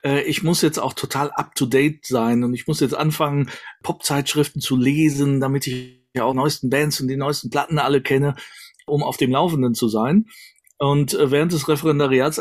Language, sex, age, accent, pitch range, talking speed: German, male, 40-59, German, 125-150 Hz, 195 wpm